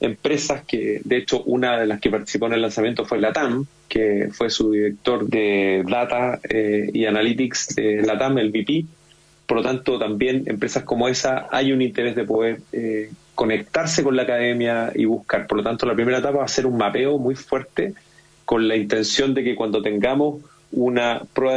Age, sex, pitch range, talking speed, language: 30-49, male, 110-140 Hz, 190 wpm, Spanish